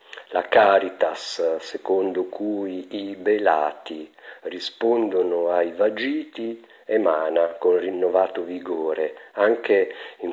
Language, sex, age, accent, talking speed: Italian, male, 50-69, native, 85 wpm